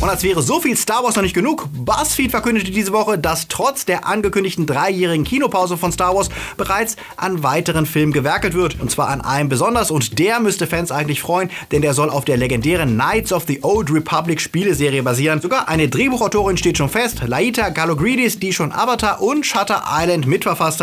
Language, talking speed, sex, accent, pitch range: German, 195 wpm, male, German, 150-205 Hz